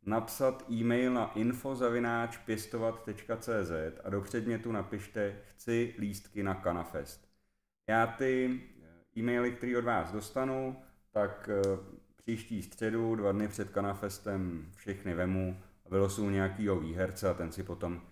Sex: male